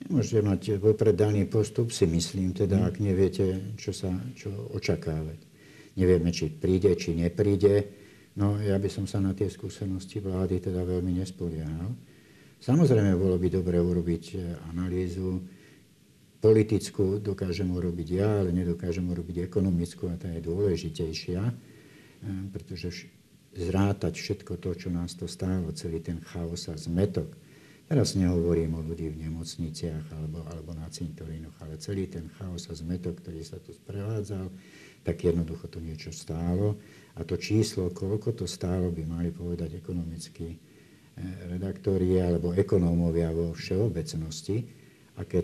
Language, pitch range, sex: Slovak, 85-100 Hz, male